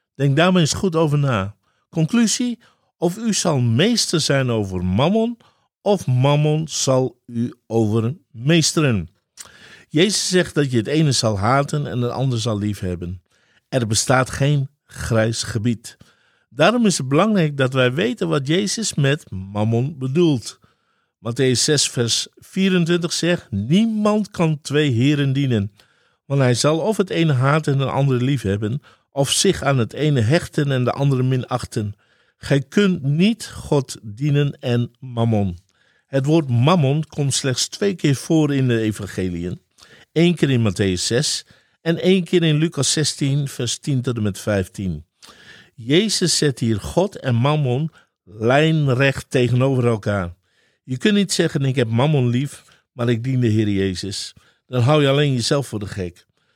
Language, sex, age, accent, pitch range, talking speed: Dutch, male, 50-69, Dutch, 115-160 Hz, 155 wpm